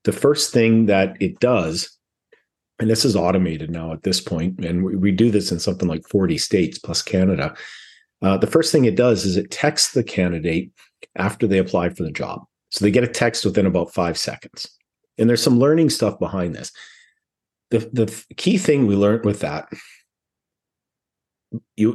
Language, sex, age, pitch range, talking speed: English, male, 50-69, 95-120 Hz, 185 wpm